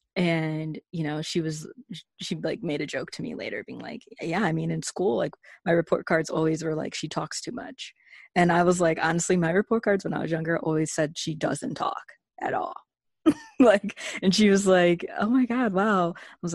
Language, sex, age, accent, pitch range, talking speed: English, female, 20-39, American, 160-195 Hz, 220 wpm